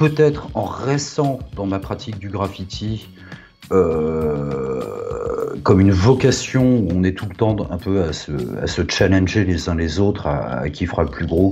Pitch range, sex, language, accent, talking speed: 85-110 Hz, male, French, French, 190 wpm